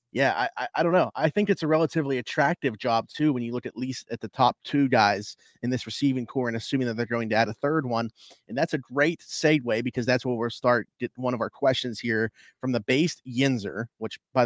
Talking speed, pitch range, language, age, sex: 250 wpm, 115-140 Hz, English, 30-49, male